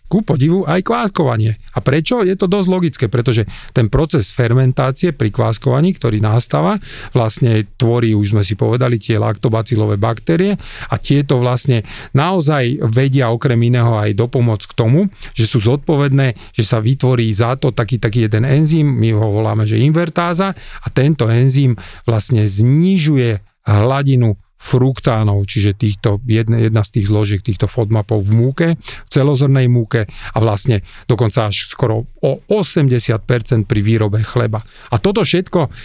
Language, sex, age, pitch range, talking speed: Slovak, male, 40-59, 110-145 Hz, 145 wpm